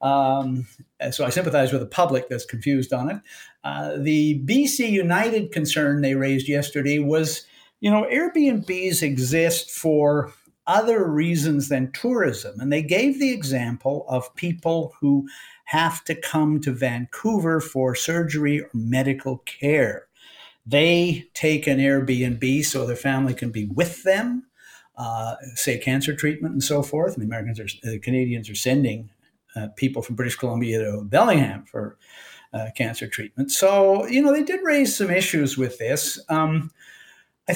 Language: English